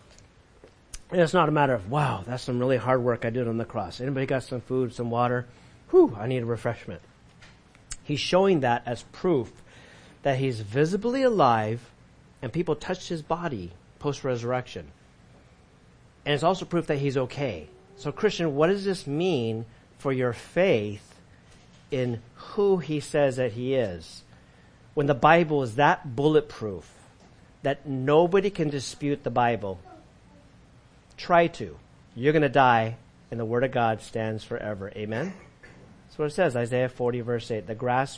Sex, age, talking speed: male, 50-69, 160 wpm